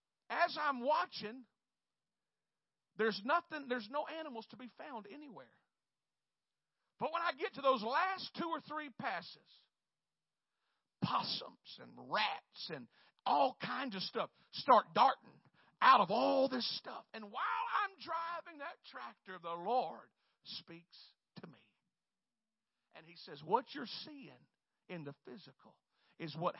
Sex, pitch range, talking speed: male, 195-280 Hz, 135 wpm